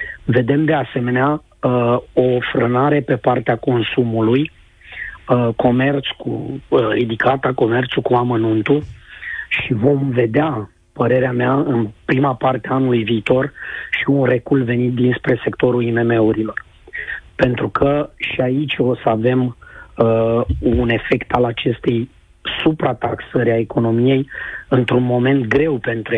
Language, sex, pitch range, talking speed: Romanian, male, 115-135 Hz, 125 wpm